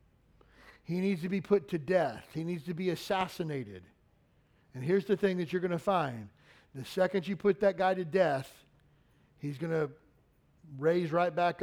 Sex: male